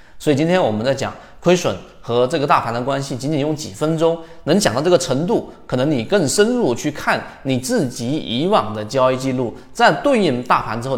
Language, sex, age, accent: Chinese, male, 20-39, native